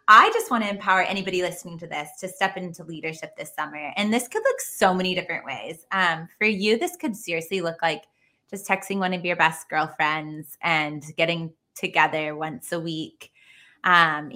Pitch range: 165-200 Hz